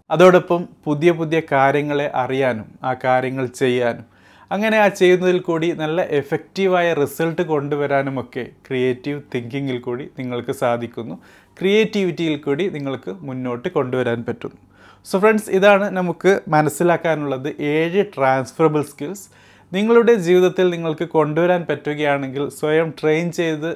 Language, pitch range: Malayalam, 130-165 Hz